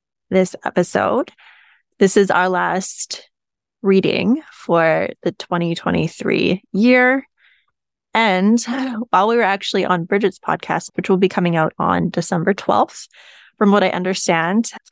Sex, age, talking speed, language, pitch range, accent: female, 20-39, 130 wpm, English, 175-220 Hz, American